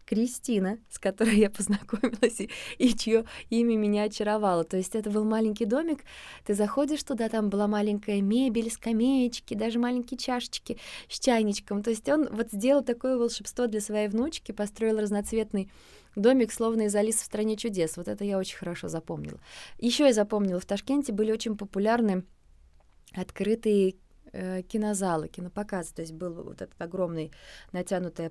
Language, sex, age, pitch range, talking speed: Russian, female, 20-39, 185-230 Hz, 155 wpm